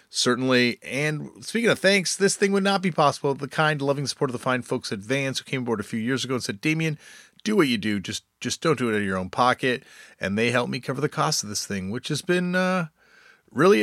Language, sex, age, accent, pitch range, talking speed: English, male, 30-49, American, 115-155 Hz, 260 wpm